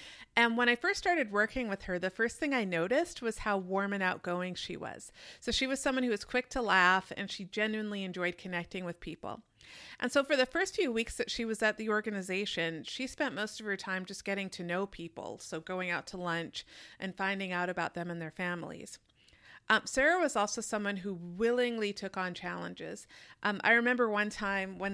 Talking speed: 215 wpm